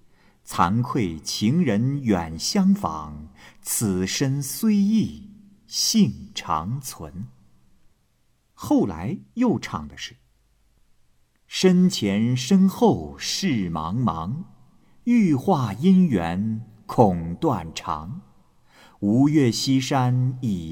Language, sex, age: Chinese, male, 50-69